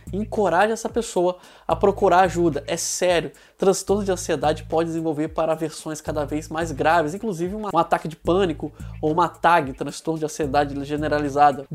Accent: Brazilian